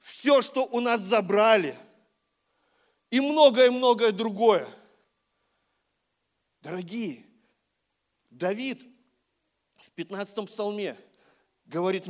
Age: 40-59